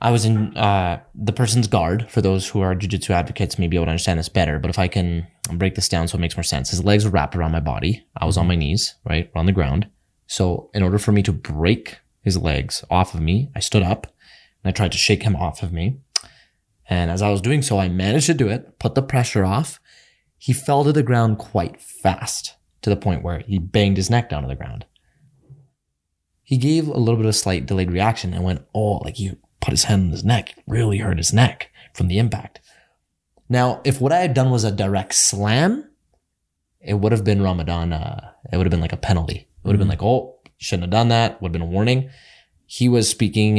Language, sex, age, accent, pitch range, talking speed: English, male, 20-39, American, 90-120 Hz, 240 wpm